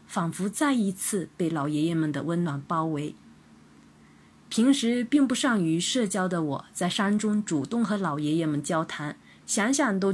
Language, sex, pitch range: Chinese, female, 155-225 Hz